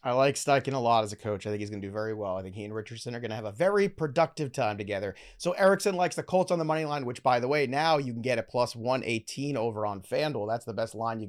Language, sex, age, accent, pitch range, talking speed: English, male, 30-49, American, 140-180 Hz, 320 wpm